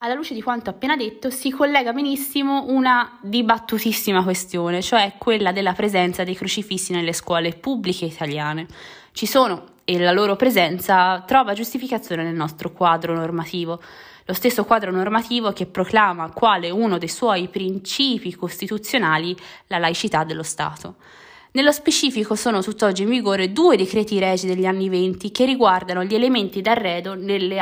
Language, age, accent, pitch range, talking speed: Italian, 20-39, native, 175-235 Hz, 150 wpm